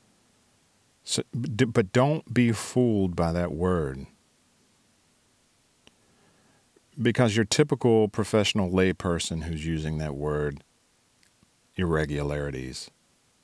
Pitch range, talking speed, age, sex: 75-100 Hz, 80 wpm, 40-59, male